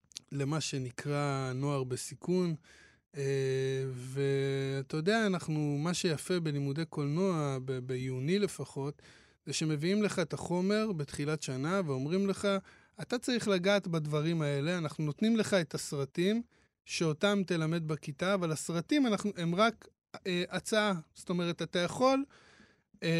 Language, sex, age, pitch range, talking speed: Hebrew, male, 20-39, 145-195 Hz, 125 wpm